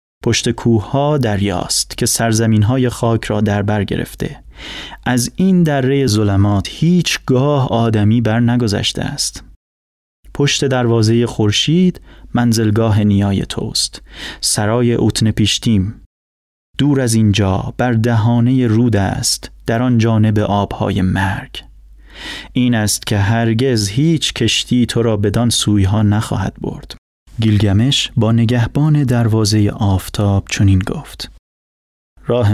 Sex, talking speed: male, 110 wpm